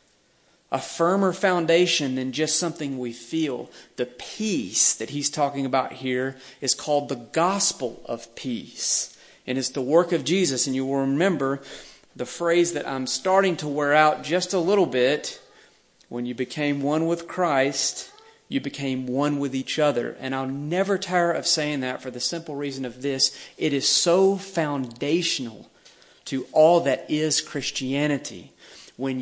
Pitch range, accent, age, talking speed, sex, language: 135-175 Hz, American, 40-59, 160 wpm, male, English